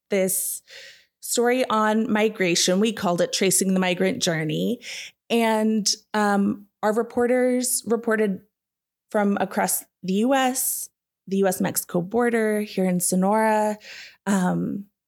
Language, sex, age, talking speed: English, female, 20-39, 105 wpm